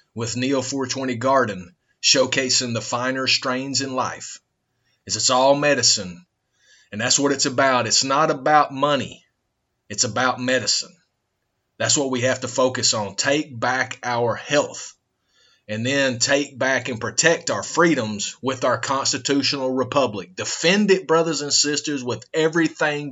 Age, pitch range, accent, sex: 30-49, 120-145 Hz, American, male